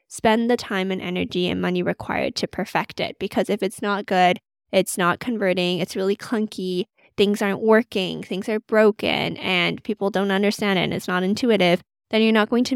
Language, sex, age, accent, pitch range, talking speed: English, female, 10-29, American, 185-220 Hz, 200 wpm